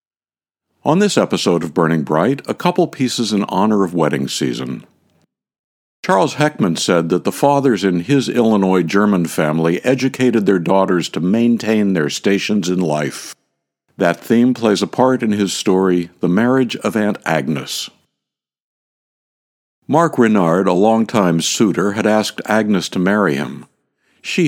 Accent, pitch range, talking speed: American, 85-125 Hz, 145 wpm